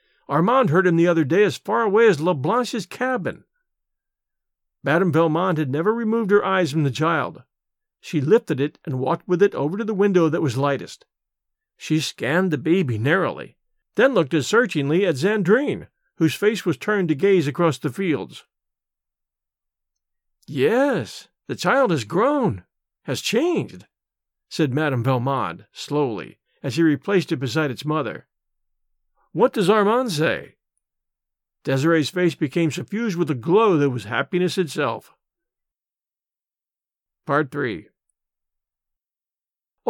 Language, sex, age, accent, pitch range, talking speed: English, male, 50-69, American, 150-195 Hz, 140 wpm